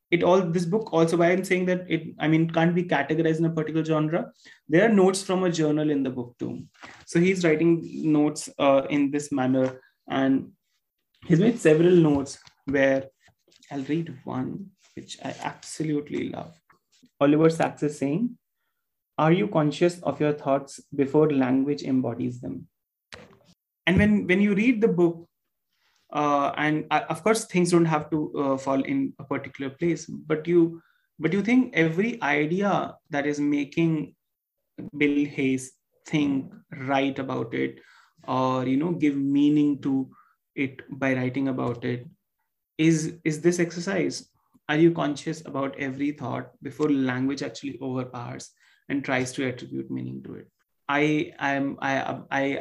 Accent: Indian